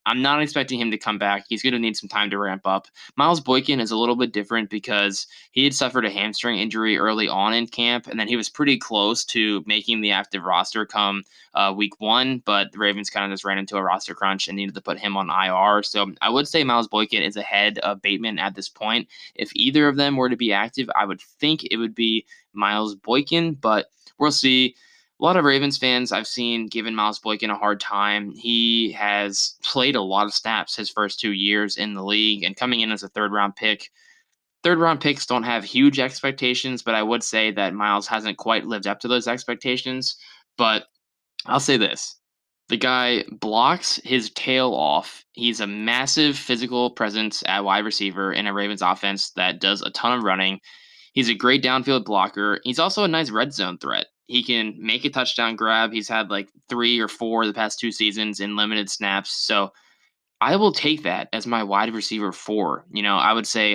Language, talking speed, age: English, 215 wpm, 10-29